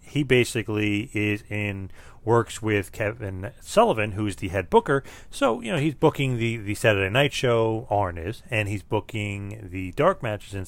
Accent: American